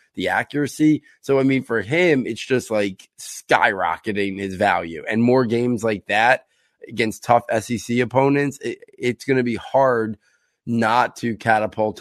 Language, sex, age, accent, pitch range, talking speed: English, male, 20-39, American, 105-125 Hz, 150 wpm